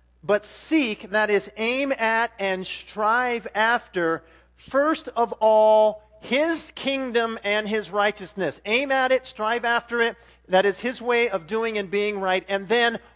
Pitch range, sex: 190-225 Hz, male